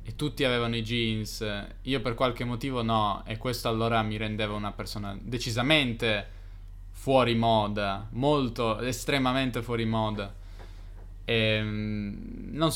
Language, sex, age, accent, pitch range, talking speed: Italian, male, 20-39, native, 105-120 Hz, 120 wpm